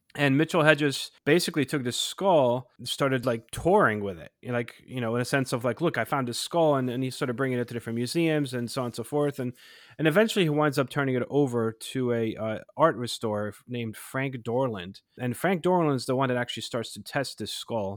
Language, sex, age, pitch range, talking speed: English, male, 30-49, 115-150 Hz, 240 wpm